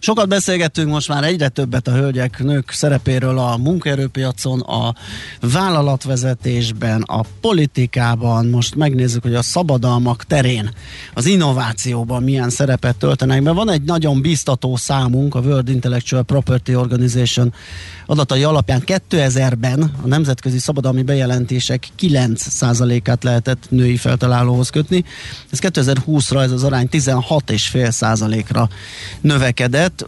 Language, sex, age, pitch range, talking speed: Hungarian, male, 30-49, 125-140 Hz, 115 wpm